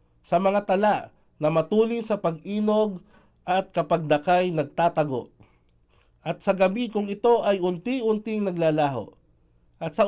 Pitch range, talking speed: 140-195 Hz, 120 wpm